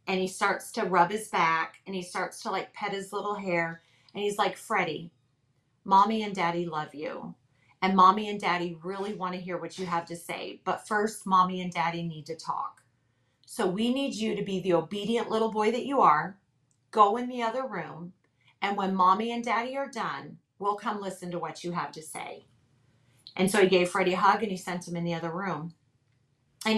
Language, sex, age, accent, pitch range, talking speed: English, female, 30-49, American, 170-210 Hz, 215 wpm